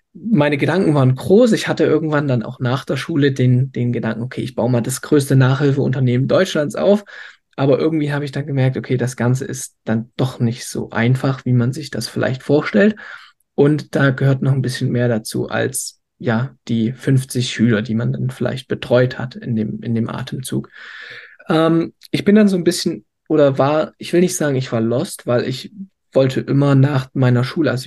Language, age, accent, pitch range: German, 20-39, German, 125-150 Hz